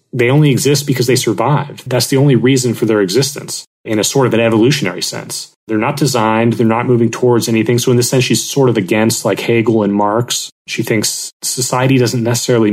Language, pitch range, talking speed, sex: English, 110-125 Hz, 210 wpm, male